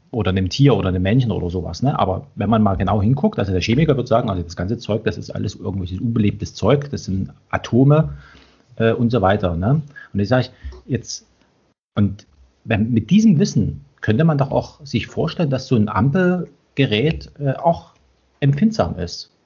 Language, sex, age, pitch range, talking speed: German, male, 40-59, 95-135 Hz, 190 wpm